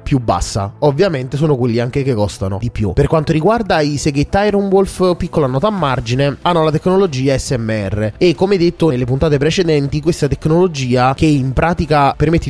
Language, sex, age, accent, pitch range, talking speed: Italian, male, 20-39, native, 125-160 Hz, 180 wpm